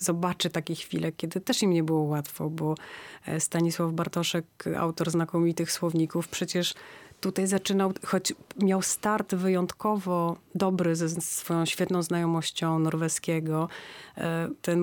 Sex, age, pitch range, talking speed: female, 30-49, 160-180 Hz, 115 wpm